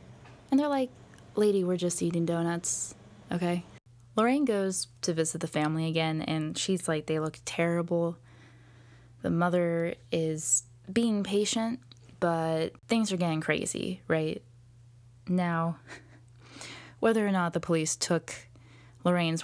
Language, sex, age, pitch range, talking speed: English, female, 20-39, 125-185 Hz, 125 wpm